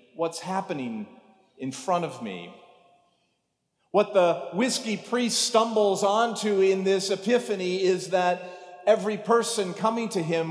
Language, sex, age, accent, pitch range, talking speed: English, male, 40-59, American, 130-180 Hz, 125 wpm